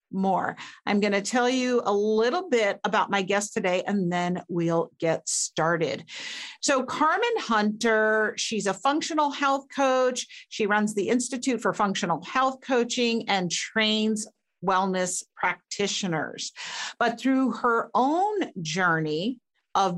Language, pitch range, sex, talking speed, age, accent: English, 185-255 Hz, female, 130 wpm, 50-69, American